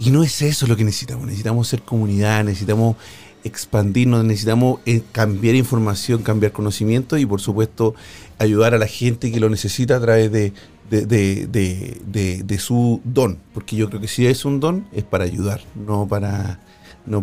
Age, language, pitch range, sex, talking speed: 40-59, Spanish, 105-135 Hz, male, 180 wpm